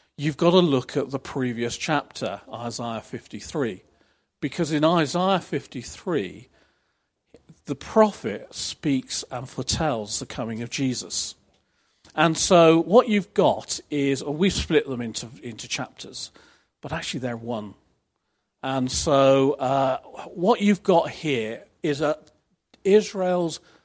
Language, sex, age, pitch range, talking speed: English, male, 40-59, 130-170 Hz, 125 wpm